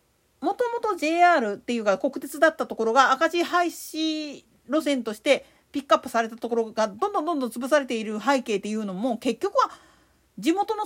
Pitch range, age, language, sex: 255-365 Hz, 40-59, Japanese, female